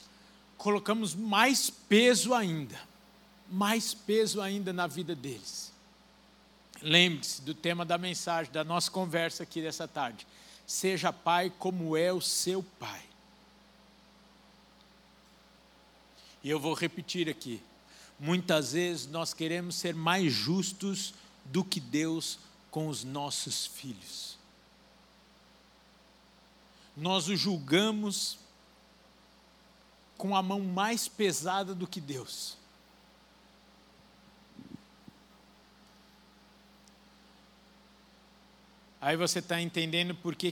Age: 60-79